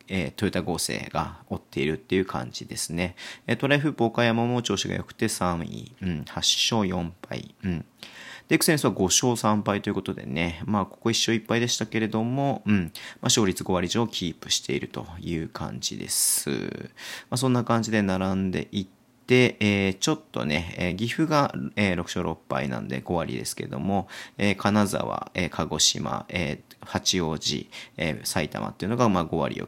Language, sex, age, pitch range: Japanese, male, 40-59, 85-110 Hz